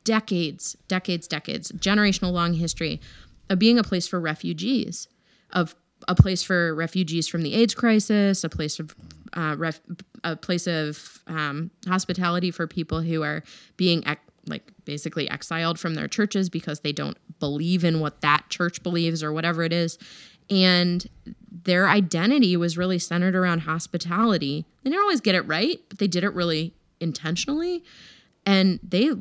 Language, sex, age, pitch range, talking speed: English, female, 20-39, 155-190 Hz, 160 wpm